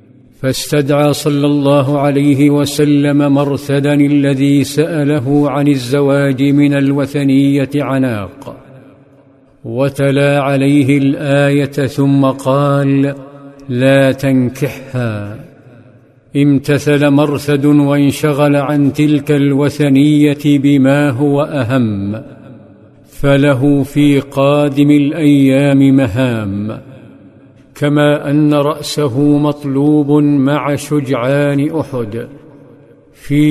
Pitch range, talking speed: 135-145 Hz, 75 wpm